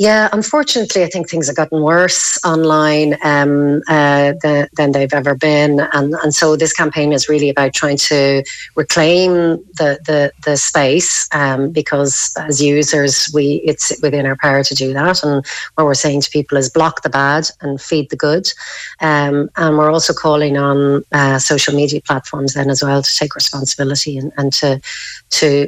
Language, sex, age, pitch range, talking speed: English, female, 40-59, 140-155 Hz, 180 wpm